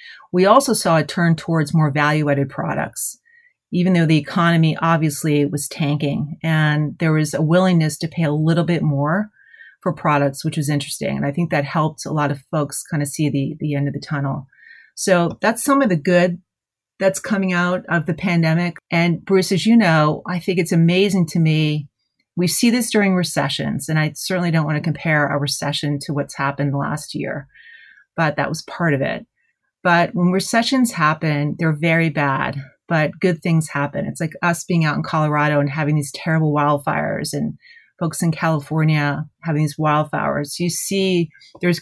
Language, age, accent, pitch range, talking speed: English, 30-49, American, 150-180 Hz, 190 wpm